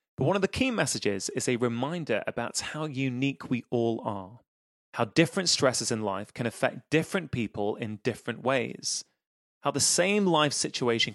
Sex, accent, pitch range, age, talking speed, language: male, British, 115-150 Hz, 20-39, 170 wpm, English